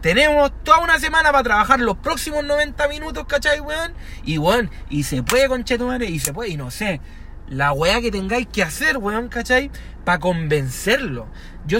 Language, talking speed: Spanish, 180 wpm